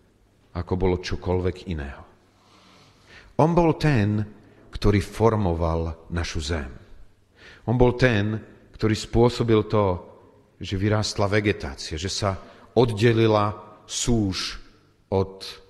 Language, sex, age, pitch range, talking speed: Slovak, male, 40-59, 95-120 Hz, 95 wpm